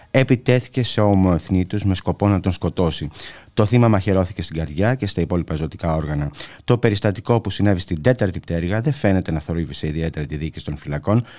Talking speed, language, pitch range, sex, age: 180 wpm, Greek, 85-115 Hz, male, 30-49